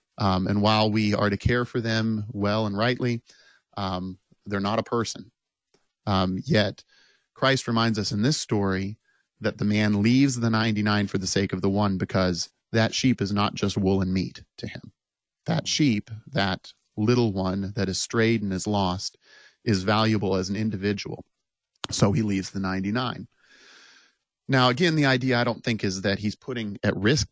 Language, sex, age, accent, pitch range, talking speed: English, male, 30-49, American, 95-110 Hz, 180 wpm